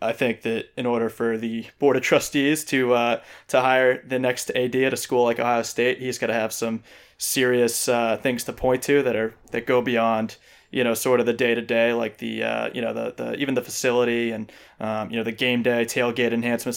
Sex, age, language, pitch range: male, 20-39, English, 115-130 Hz